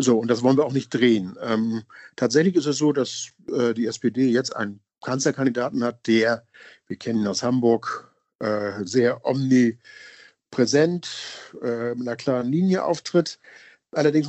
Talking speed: 155 wpm